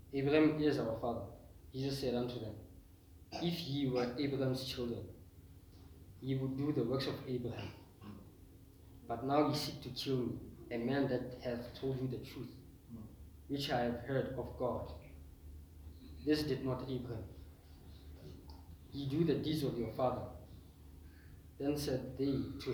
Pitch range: 90-135 Hz